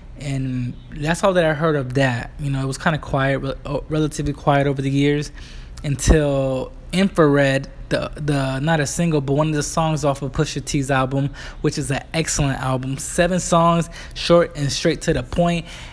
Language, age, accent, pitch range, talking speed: English, 20-39, American, 135-165 Hz, 190 wpm